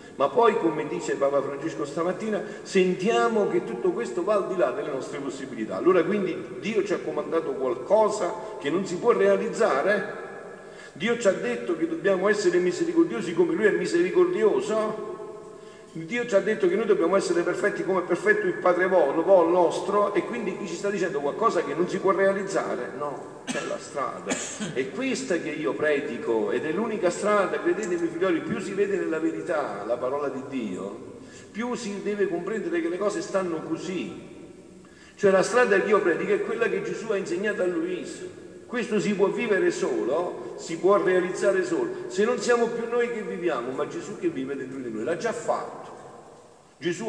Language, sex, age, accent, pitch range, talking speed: Italian, male, 50-69, native, 195-315 Hz, 185 wpm